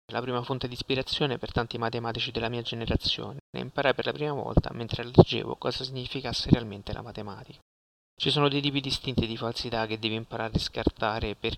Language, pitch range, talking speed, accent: Italian, 110-125 Hz, 190 wpm, native